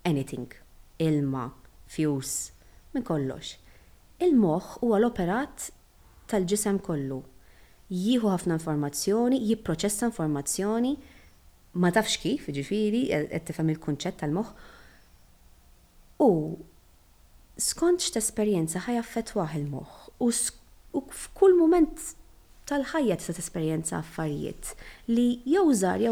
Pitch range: 160-225 Hz